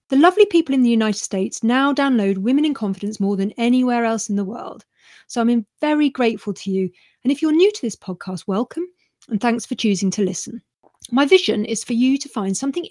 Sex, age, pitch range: female, 40-59, 205-275 Hz